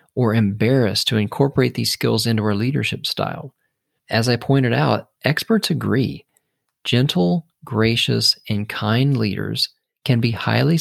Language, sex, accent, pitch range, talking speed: English, male, American, 110-140 Hz, 135 wpm